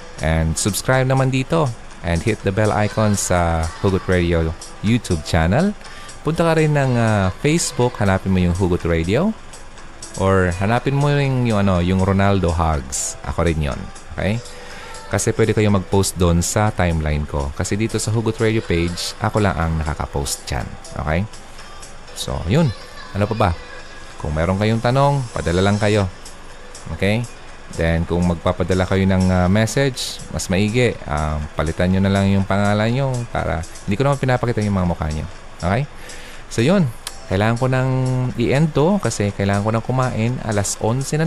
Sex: male